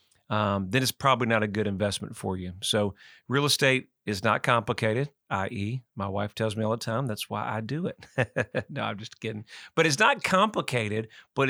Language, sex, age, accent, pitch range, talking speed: English, male, 40-59, American, 110-140 Hz, 200 wpm